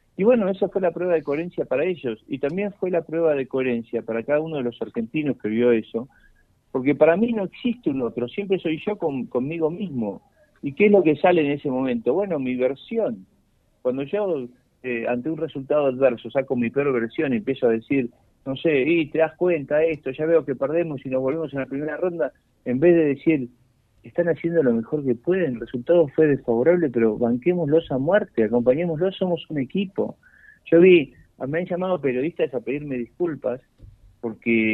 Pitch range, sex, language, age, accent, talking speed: 125-170 Hz, male, Spanish, 50-69, Argentinian, 200 wpm